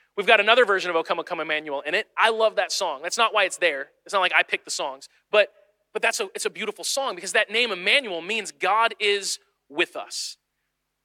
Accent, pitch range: American, 180-255 Hz